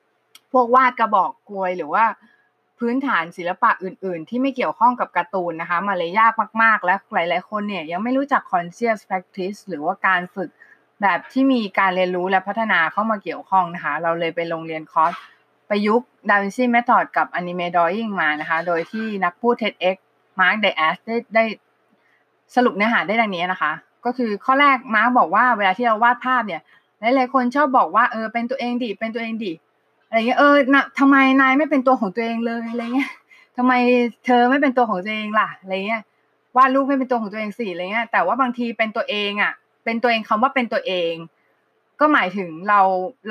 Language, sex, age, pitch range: Thai, female, 20-39, 185-245 Hz